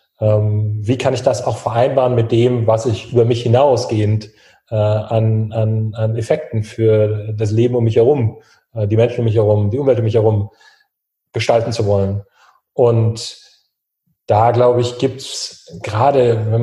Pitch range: 110-120 Hz